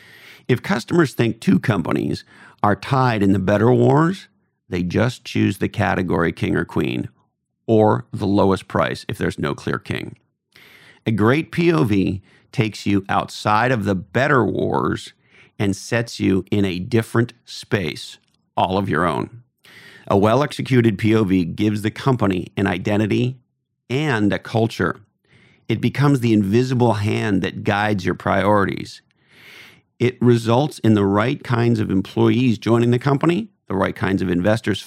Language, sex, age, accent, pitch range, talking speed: English, male, 40-59, American, 100-120 Hz, 145 wpm